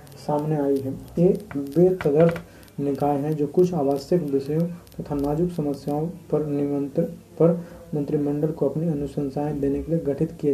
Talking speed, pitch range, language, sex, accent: 150 wpm, 145-160 Hz, Hindi, male, native